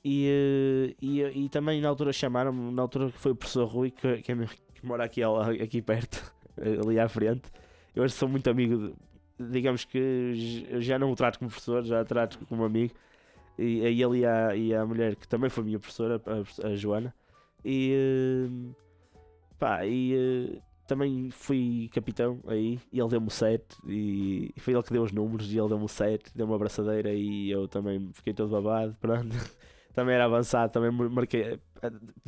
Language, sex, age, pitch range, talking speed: Portuguese, male, 20-39, 110-130 Hz, 180 wpm